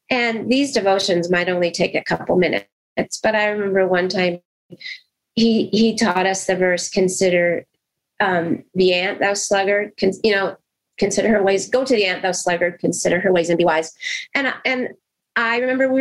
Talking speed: 185 wpm